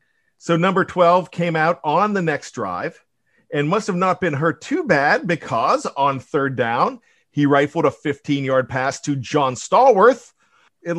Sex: male